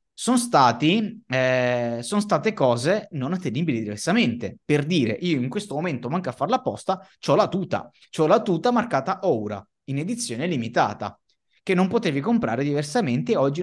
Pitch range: 120-200 Hz